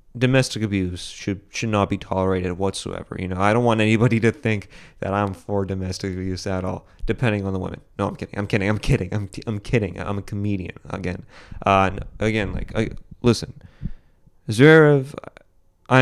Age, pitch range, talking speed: 20-39, 95-125 Hz, 185 wpm